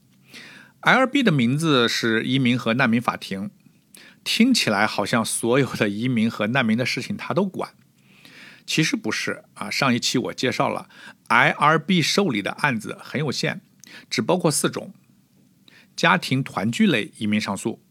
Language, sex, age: Chinese, male, 50-69